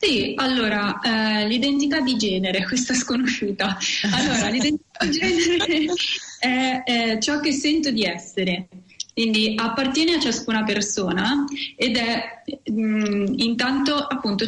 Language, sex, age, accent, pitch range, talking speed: Italian, female, 20-39, native, 195-250 Hz, 115 wpm